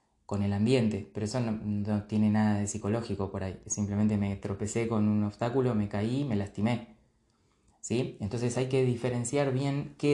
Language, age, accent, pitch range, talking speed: Spanish, 20-39, Argentinian, 105-120 Hz, 180 wpm